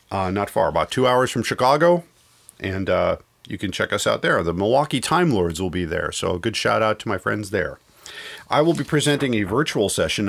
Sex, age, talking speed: male, 40-59, 220 wpm